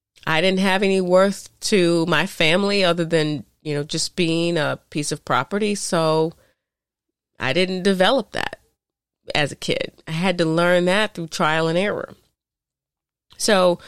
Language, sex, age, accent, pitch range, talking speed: English, female, 30-49, American, 150-190 Hz, 155 wpm